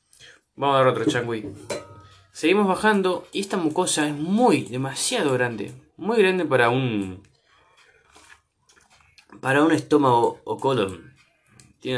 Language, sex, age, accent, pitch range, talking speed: Spanish, male, 20-39, Argentinian, 115-160 Hz, 120 wpm